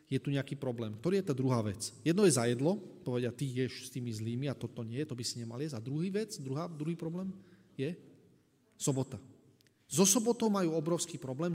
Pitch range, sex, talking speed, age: 140-200 Hz, male, 210 wpm, 30-49